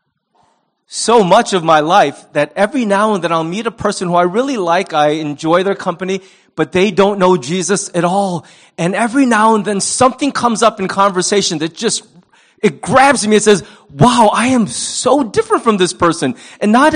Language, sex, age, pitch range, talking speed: English, male, 30-49, 170-225 Hz, 200 wpm